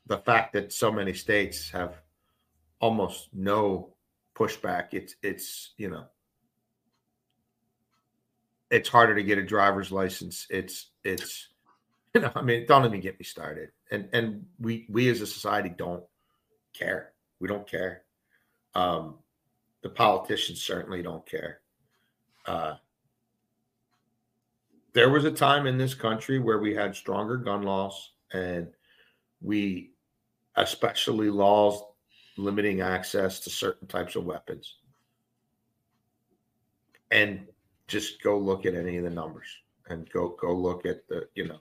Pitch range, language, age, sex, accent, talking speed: 95-120 Hz, English, 50-69, male, American, 135 wpm